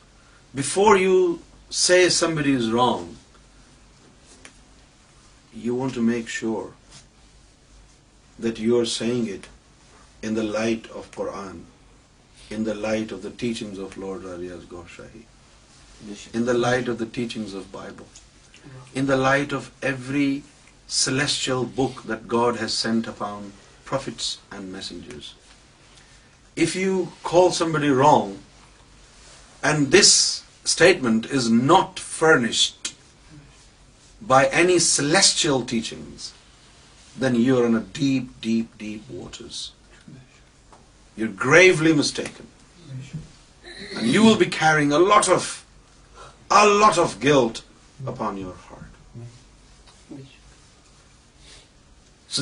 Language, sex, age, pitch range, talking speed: Urdu, male, 50-69, 110-160 Hz, 110 wpm